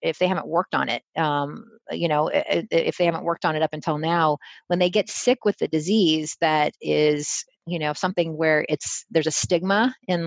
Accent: American